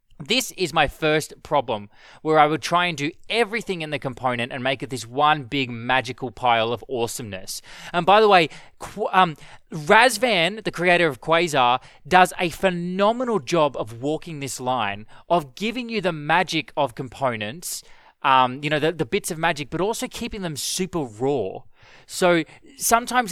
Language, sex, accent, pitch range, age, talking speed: English, male, Australian, 140-200 Hz, 20-39, 170 wpm